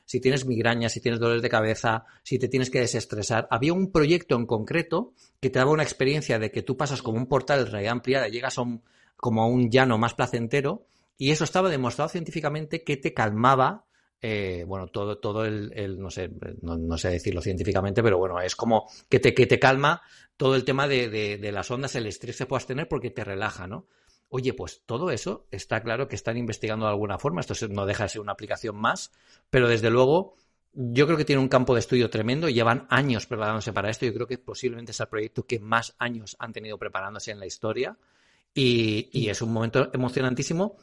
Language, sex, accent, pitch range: Spanish, male, Spanish, 110-135 Hz